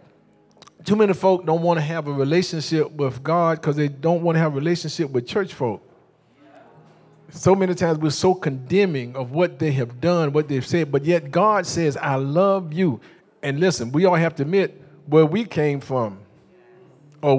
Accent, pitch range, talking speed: American, 150-185 Hz, 190 wpm